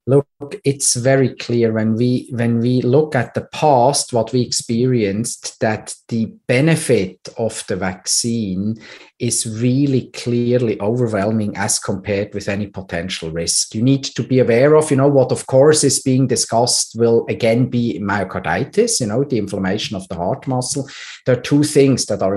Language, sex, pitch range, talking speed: English, male, 110-135 Hz, 165 wpm